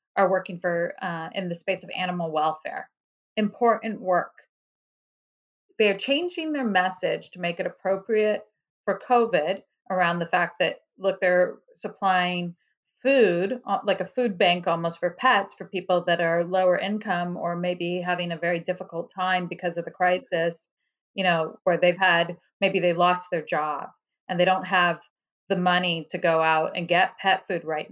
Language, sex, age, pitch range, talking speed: English, female, 40-59, 175-215 Hz, 170 wpm